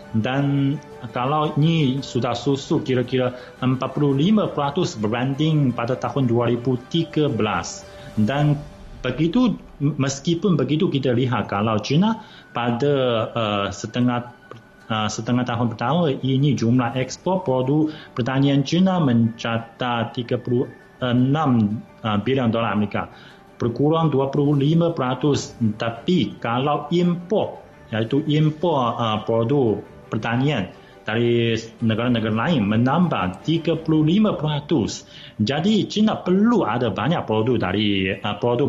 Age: 30-49